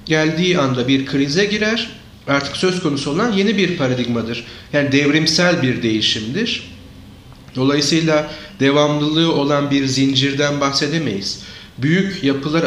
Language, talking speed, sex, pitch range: English, 115 wpm, male, 130-165 Hz